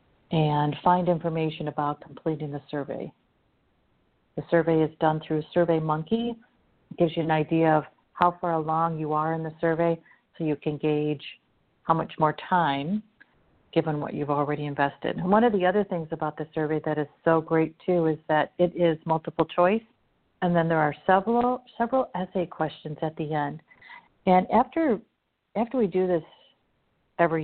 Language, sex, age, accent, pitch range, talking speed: English, female, 50-69, American, 155-175 Hz, 170 wpm